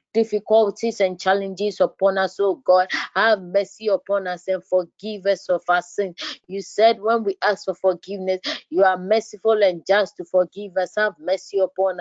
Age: 20-39